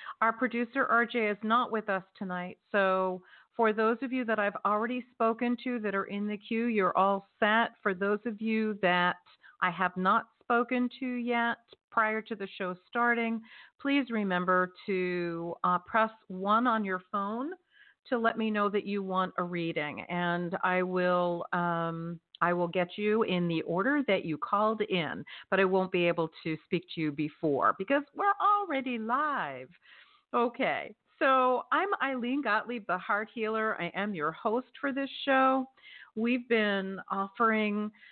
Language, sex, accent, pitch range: English, female, American, 180-235 Hz